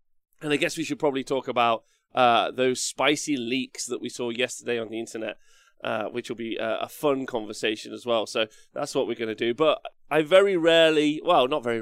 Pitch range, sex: 125-170 Hz, male